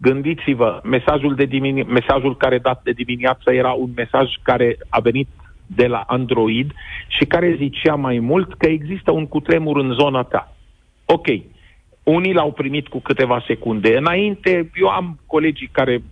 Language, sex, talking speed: Romanian, male, 150 wpm